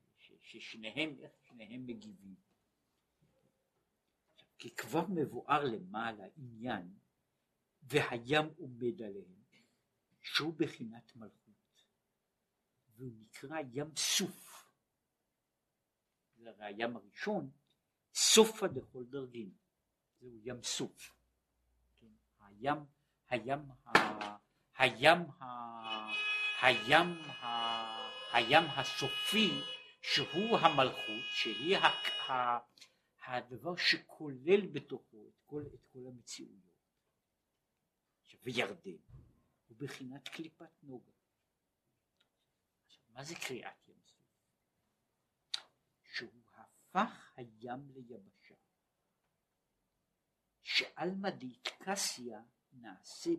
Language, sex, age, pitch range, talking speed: Hebrew, male, 60-79, 115-155 Hz, 70 wpm